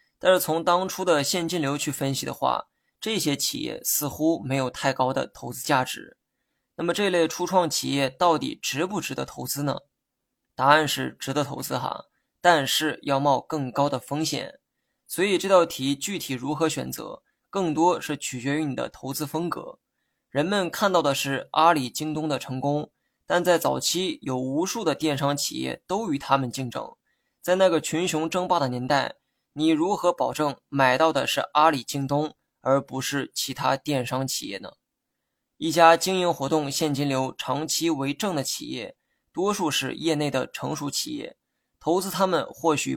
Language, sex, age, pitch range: Chinese, male, 20-39, 135-170 Hz